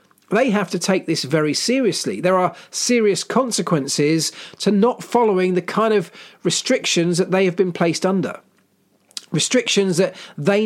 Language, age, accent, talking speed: English, 40-59, British, 150 wpm